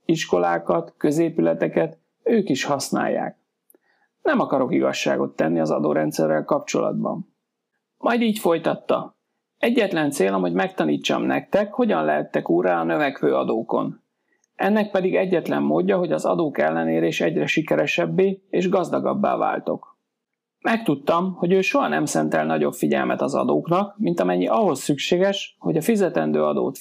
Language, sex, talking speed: Hungarian, male, 130 wpm